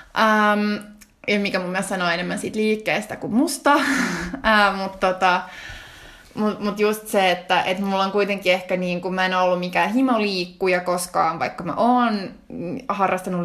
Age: 20-39